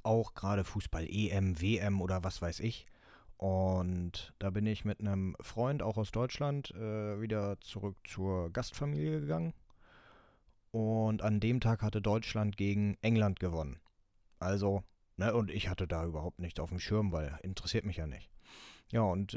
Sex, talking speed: male, 160 wpm